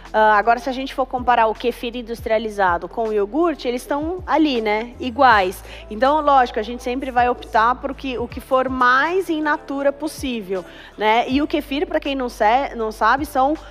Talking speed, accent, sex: 195 wpm, Brazilian, female